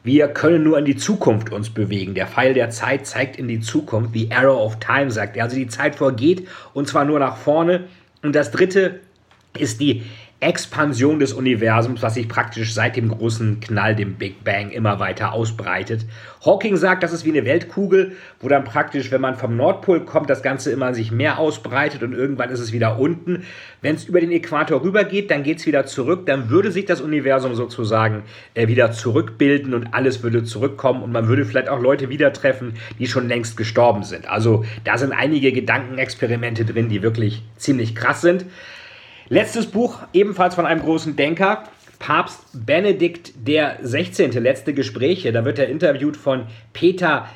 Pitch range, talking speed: 115-155 Hz, 180 wpm